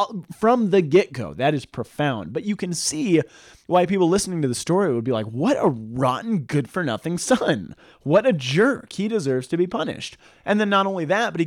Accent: American